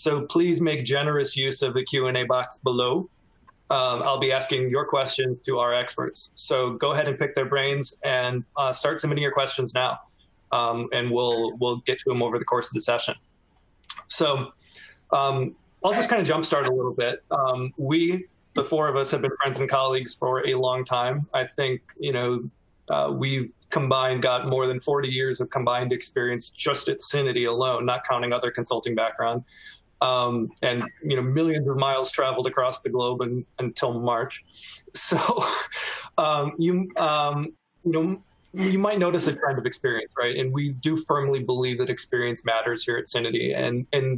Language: English